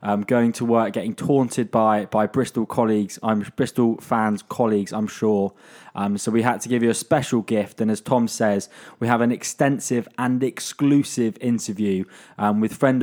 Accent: British